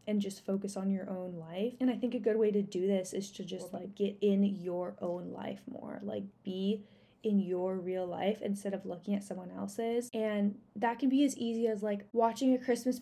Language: English